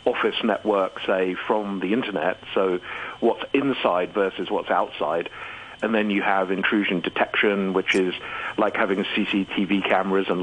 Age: 50-69